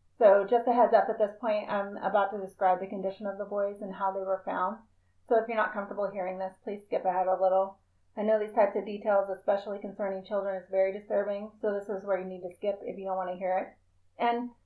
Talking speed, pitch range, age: 255 wpm, 180-220 Hz, 30-49